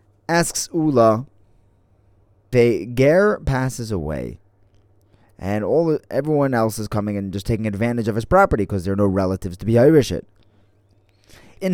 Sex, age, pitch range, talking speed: male, 20-39, 100-125 Hz, 150 wpm